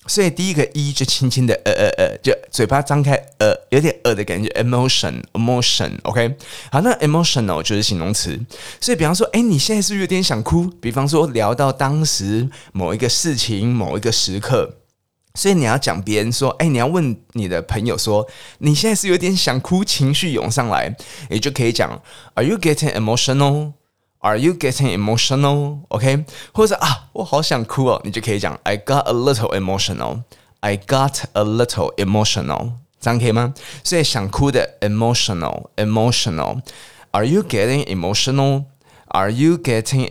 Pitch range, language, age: 105-145 Hz, Chinese, 20-39